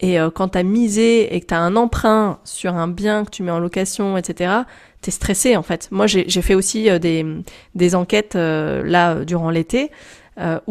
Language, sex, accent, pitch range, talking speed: French, female, French, 180-225 Hz, 195 wpm